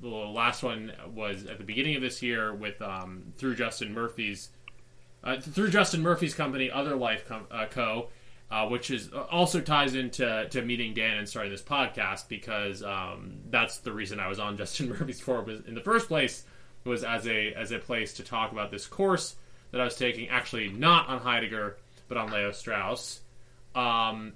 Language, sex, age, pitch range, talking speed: English, male, 20-39, 110-130 Hz, 185 wpm